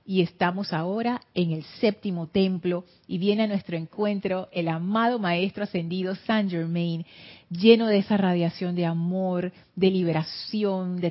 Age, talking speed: 40-59, 145 wpm